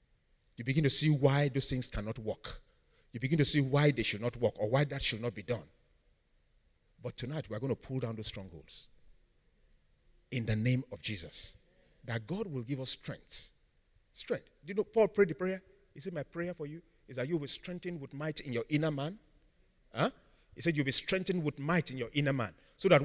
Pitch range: 120-155 Hz